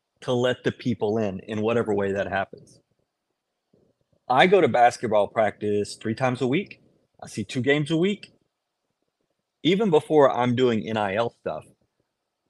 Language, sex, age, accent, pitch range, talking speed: English, male, 30-49, American, 115-155 Hz, 150 wpm